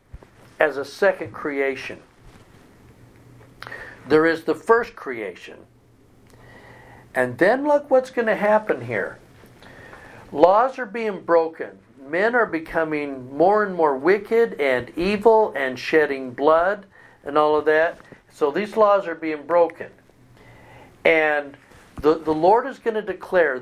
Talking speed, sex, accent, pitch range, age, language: 130 wpm, male, American, 140-190 Hz, 60-79, English